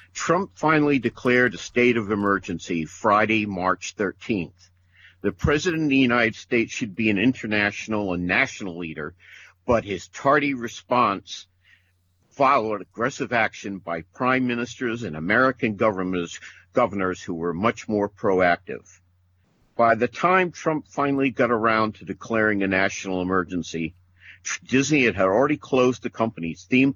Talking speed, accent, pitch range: 135 wpm, American, 90-125 Hz